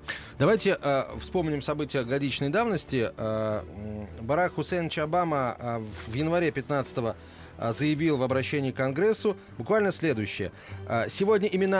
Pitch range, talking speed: 125-170 Hz, 120 wpm